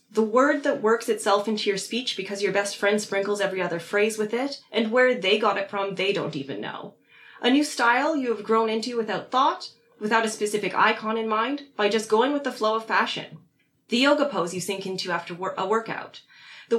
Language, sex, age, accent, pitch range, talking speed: English, female, 20-39, American, 200-245 Hz, 220 wpm